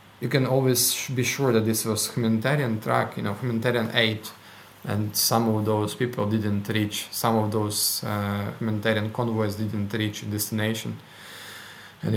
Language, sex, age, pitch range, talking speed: English, male, 20-39, 105-120 Hz, 160 wpm